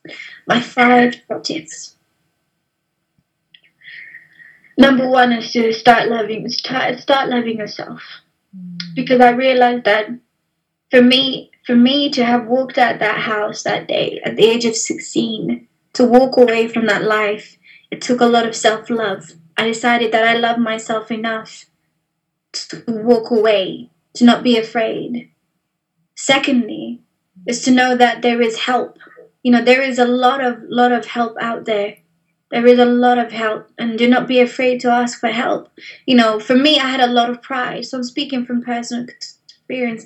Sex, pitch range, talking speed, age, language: female, 225-255 Hz, 160 wpm, 20-39, English